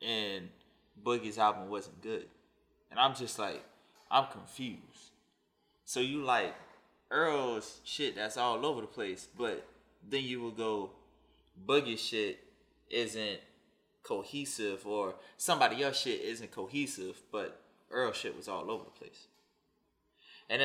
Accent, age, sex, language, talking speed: American, 20-39, male, English, 130 wpm